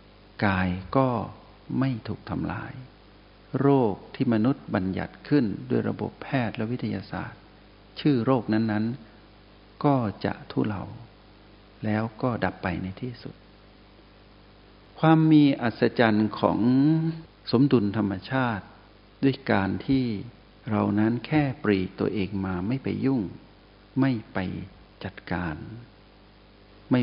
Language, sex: Thai, male